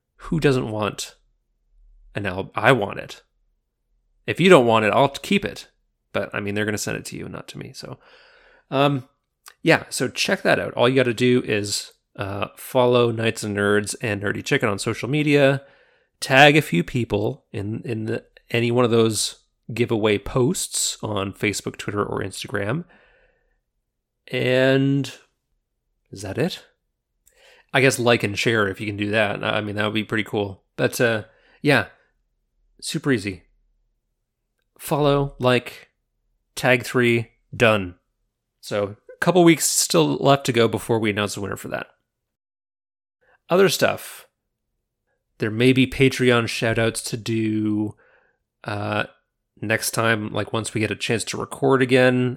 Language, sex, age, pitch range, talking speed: English, male, 30-49, 105-130 Hz, 160 wpm